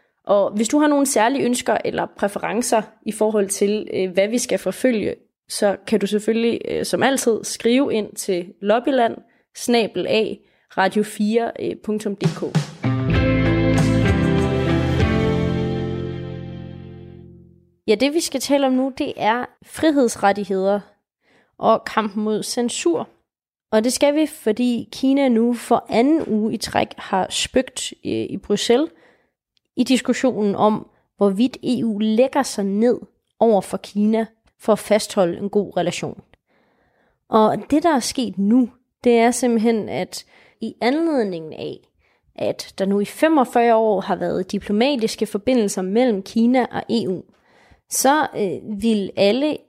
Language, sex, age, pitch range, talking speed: Danish, female, 20-39, 200-250 Hz, 125 wpm